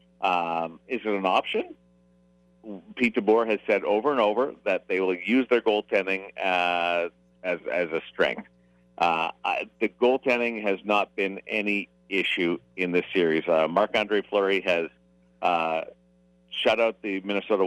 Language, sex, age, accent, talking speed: English, male, 50-69, American, 150 wpm